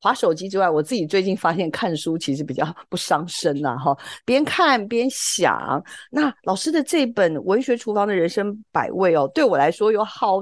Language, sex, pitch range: Chinese, female, 170-265 Hz